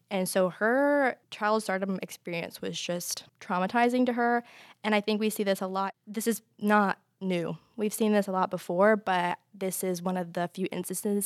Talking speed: 195 wpm